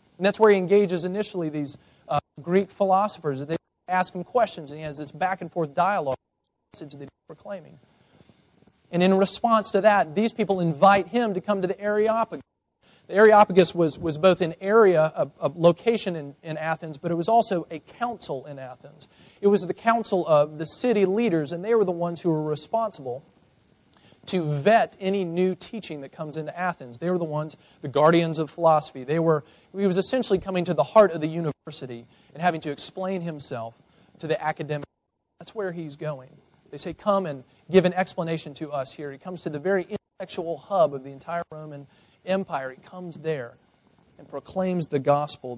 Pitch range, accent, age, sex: 150-190 Hz, American, 40-59, male